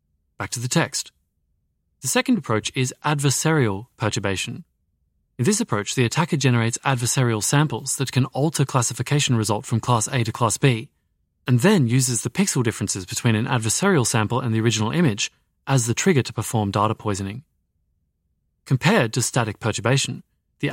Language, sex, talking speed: English, male, 160 wpm